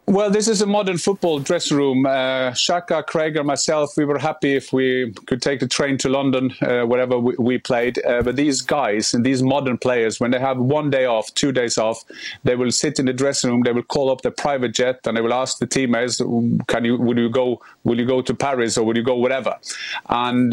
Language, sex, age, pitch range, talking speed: English, male, 30-49, 120-145 Hz, 240 wpm